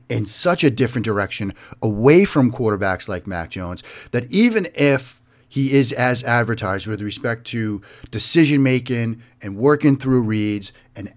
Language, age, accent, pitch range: English, 40-59, American, 110-130 Hz